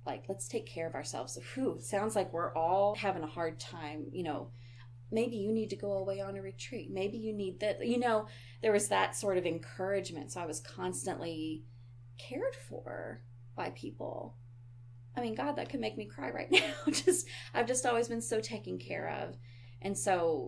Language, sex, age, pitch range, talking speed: English, female, 20-39, 120-180 Hz, 195 wpm